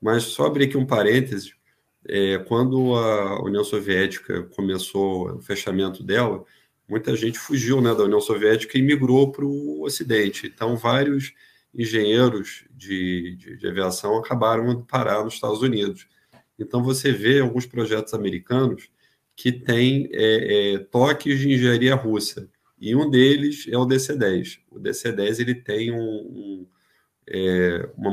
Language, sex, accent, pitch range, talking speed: Portuguese, male, Brazilian, 105-130 Hz, 145 wpm